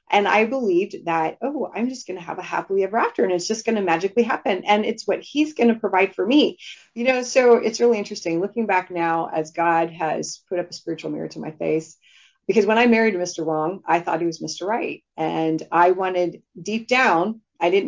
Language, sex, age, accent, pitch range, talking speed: English, female, 30-49, American, 170-205 Hz, 230 wpm